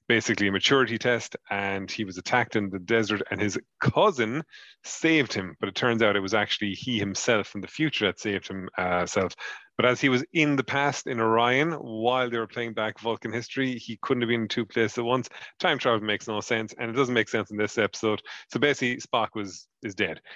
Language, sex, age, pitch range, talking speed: English, male, 30-49, 105-125 Hz, 220 wpm